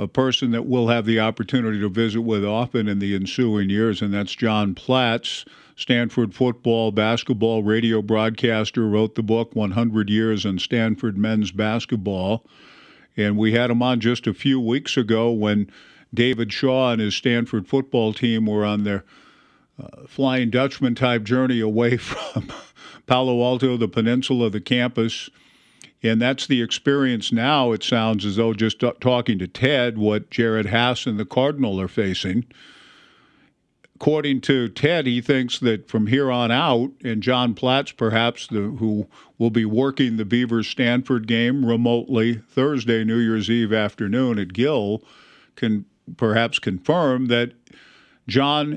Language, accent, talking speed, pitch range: English, American, 155 wpm, 110-125 Hz